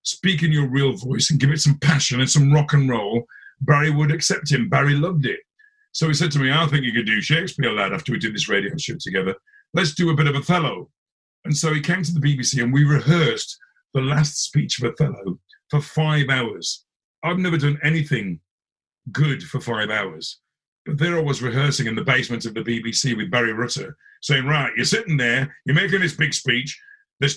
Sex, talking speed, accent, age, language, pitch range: male, 215 wpm, British, 50-69, English, 135-170 Hz